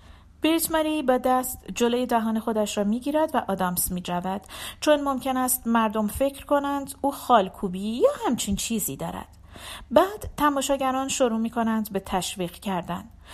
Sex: female